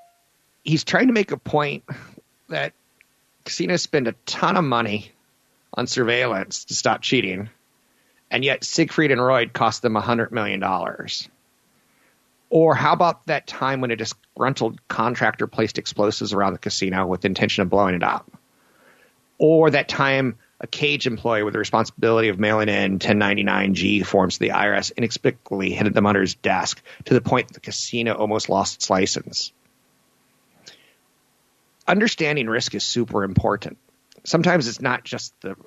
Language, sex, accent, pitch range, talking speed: English, male, American, 100-135 Hz, 155 wpm